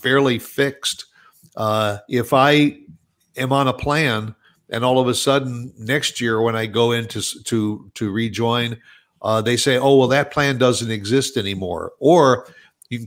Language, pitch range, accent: English, 115-145 Hz, American